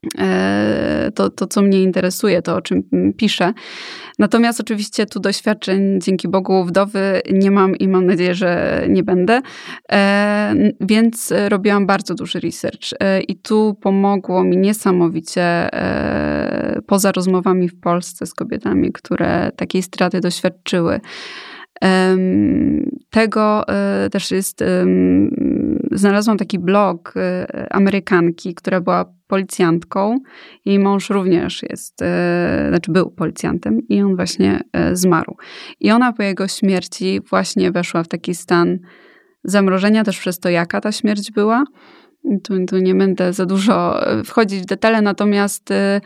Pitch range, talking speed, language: 180-215 Hz, 120 wpm, Polish